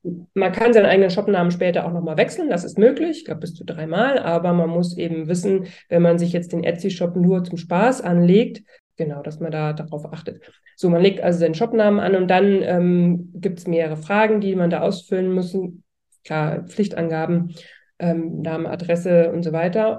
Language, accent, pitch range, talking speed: German, German, 170-210 Hz, 195 wpm